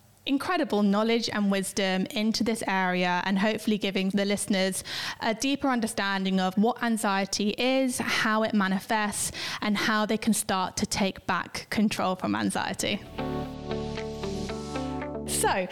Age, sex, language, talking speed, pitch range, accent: 10-29, female, English, 130 wpm, 195-235 Hz, British